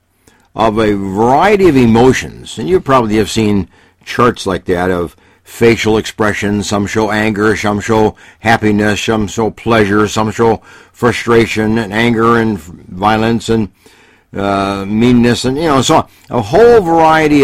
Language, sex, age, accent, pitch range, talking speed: English, male, 60-79, American, 90-125 Hz, 150 wpm